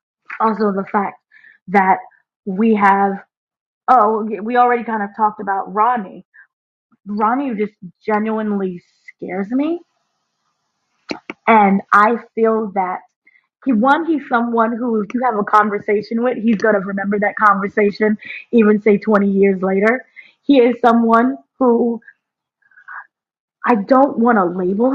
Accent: American